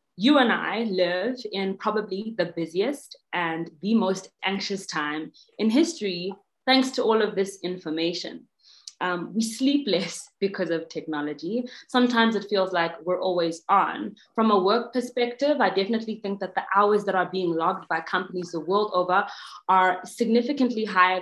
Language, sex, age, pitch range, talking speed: English, female, 20-39, 180-245 Hz, 160 wpm